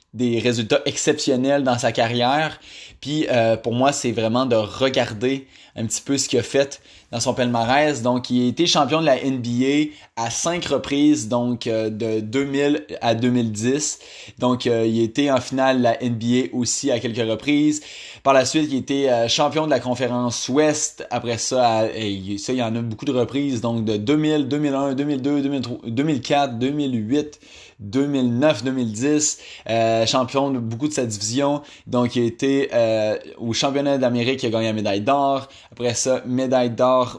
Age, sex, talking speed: 20-39, male, 175 wpm